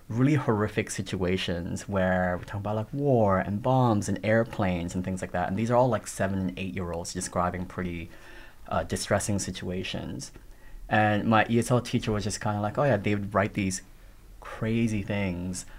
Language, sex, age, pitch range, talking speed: English, male, 20-39, 90-110 Hz, 185 wpm